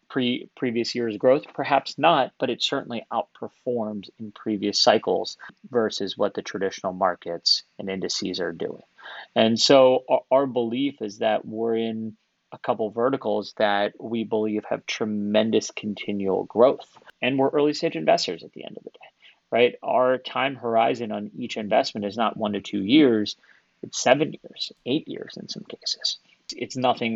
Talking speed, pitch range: 165 wpm, 105-125 Hz